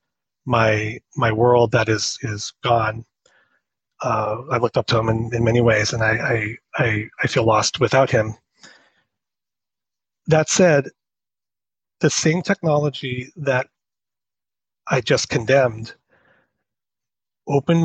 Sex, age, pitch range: male, 30-49, 115-145 Hz